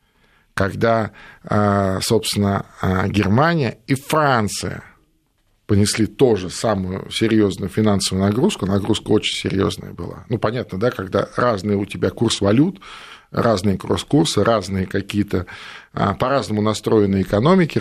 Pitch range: 100-125 Hz